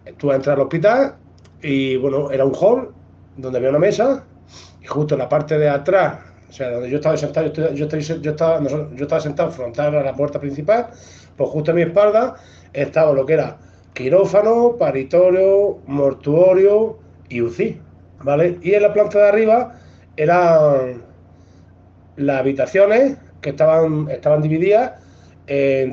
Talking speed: 155 wpm